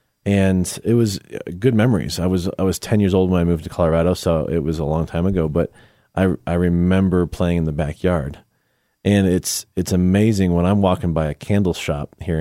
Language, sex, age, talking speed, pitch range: English, male, 30-49, 215 wpm, 80-95 Hz